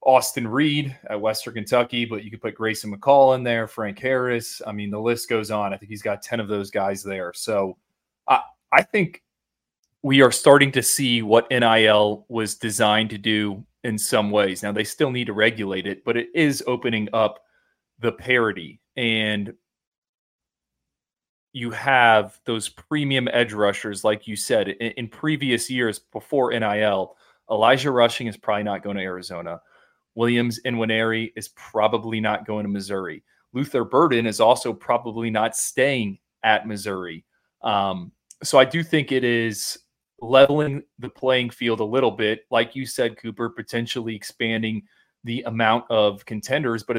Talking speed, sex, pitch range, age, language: 165 wpm, male, 105-125 Hz, 30-49, English